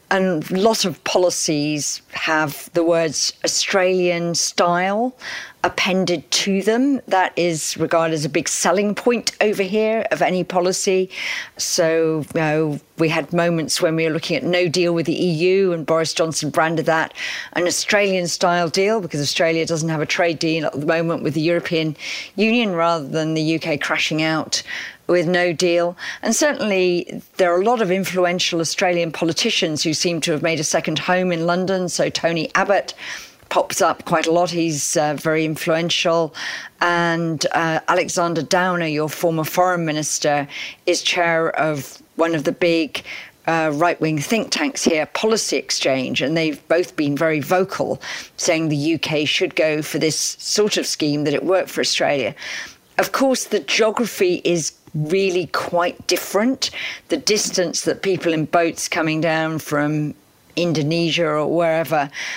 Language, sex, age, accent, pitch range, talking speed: English, female, 40-59, British, 155-180 Hz, 160 wpm